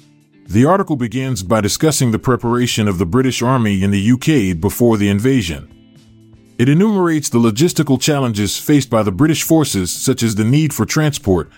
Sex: male